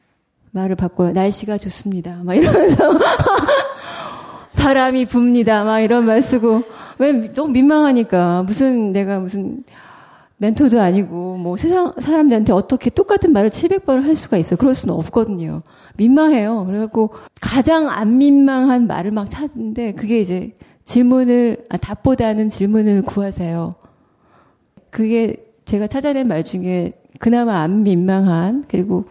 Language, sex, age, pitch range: Korean, female, 30-49, 190-255 Hz